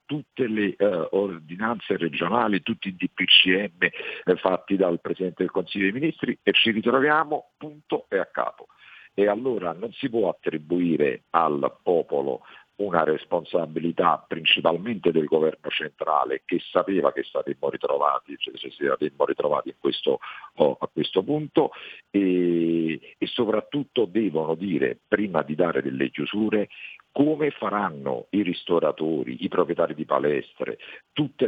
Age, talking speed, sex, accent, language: 50-69, 135 wpm, male, native, Italian